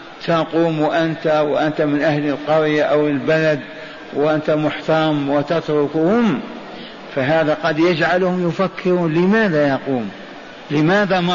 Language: Arabic